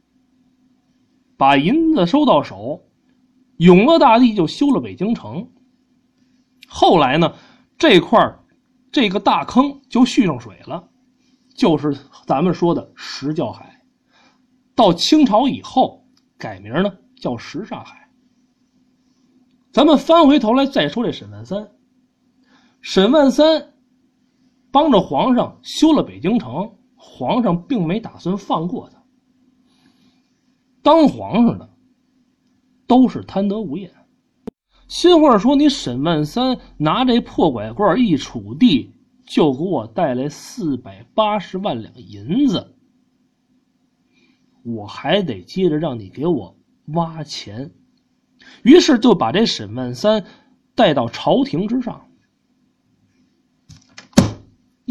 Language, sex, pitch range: Chinese, male, 210-260 Hz